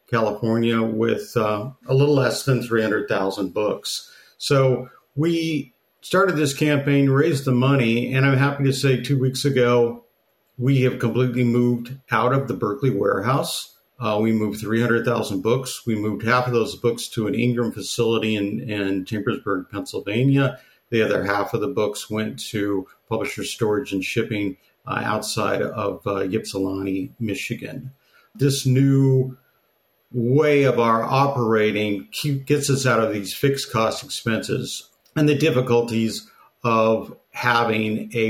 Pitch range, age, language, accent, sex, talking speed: 110-130 Hz, 50-69, English, American, male, 145 wpm